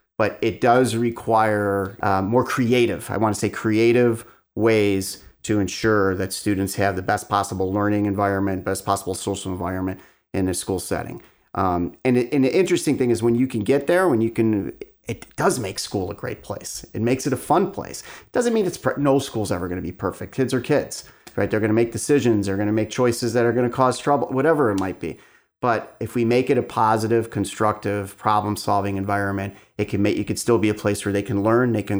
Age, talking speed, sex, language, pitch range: 30-49, 225 wpm, male, English, 100-120 Hz